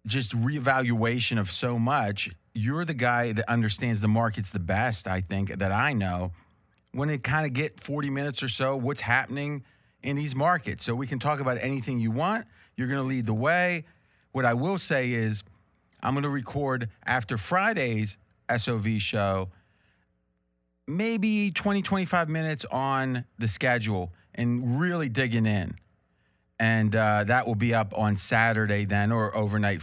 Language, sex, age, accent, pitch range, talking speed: English, male, 30-49, American, 105-130 Hz, 160 wpm